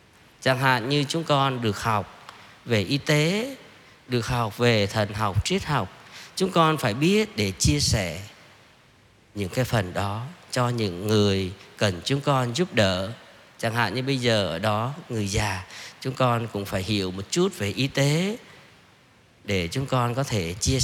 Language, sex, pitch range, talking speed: Vietnamese, male, 105-135 Hz, 175 wpm